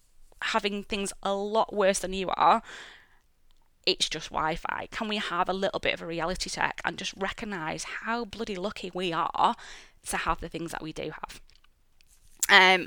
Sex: female